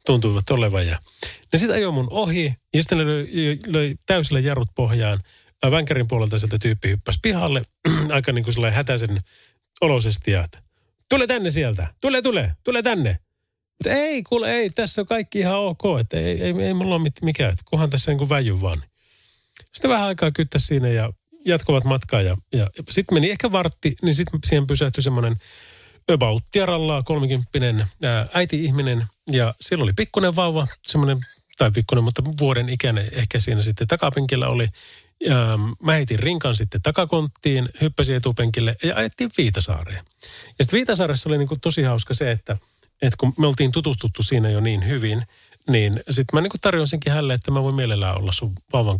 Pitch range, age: 110-155 Hz, 30-49